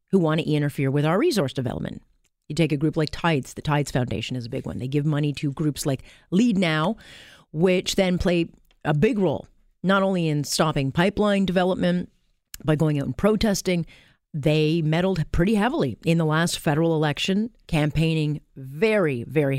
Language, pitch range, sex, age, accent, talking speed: English, 145-195 Hz, female, 40-59, American, 180 wpm